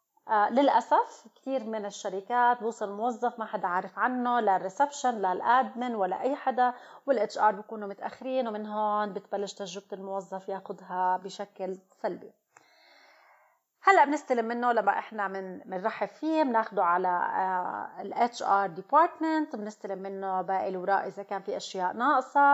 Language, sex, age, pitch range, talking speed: Arabic, female, 30-49, 200-245 Hz, 135 wpm